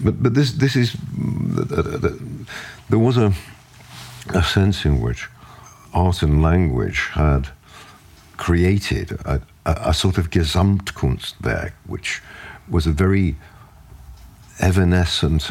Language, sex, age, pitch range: English, male, 60-79, 75-100 Hz